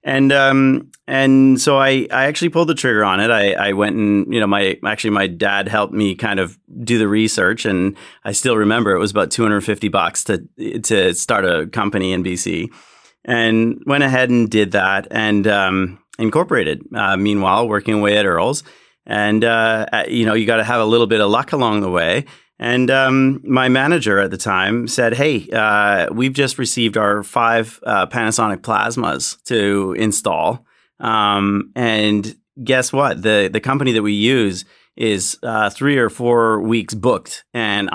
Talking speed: 180 wpm